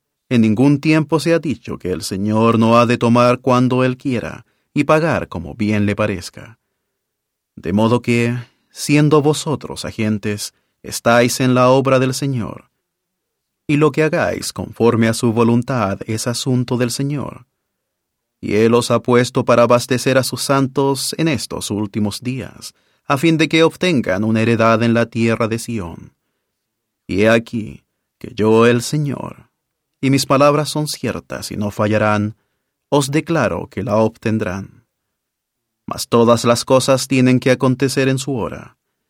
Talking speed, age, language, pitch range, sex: 155 wpm, 30-49, English, 110-135 Hz, male